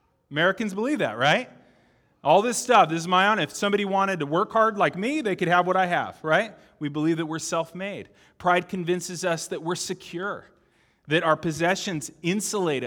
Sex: male